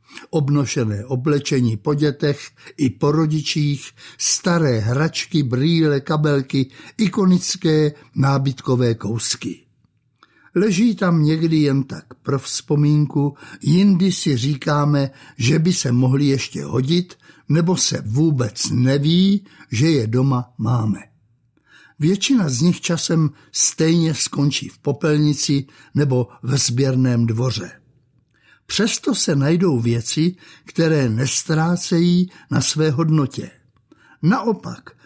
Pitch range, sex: 130-165 Hz, male